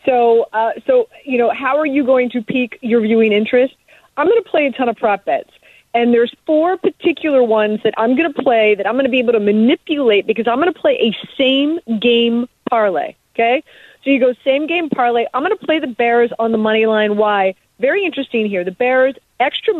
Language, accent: English, American